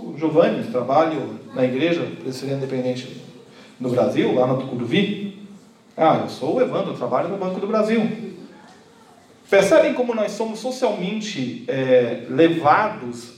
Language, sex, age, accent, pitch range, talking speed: Portuguese, male, 40-59, Brazilian, 175-240 Hz, 125 wpm